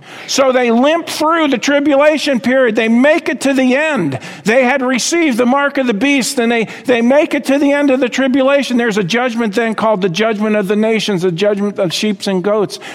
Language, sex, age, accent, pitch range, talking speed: English, male, 50-69, American, 165-240 Hz, 220 wpm